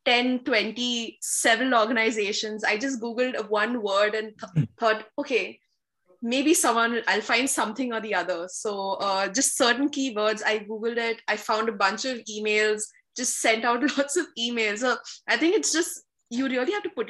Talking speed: 180 wpm